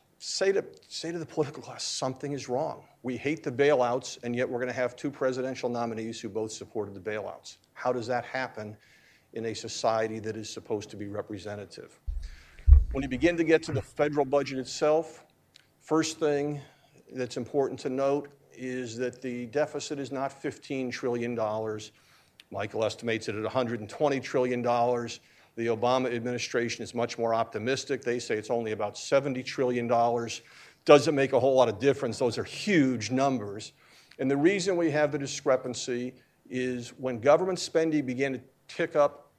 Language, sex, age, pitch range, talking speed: English, male, 50-69, 115-140 Hz, 170 wpm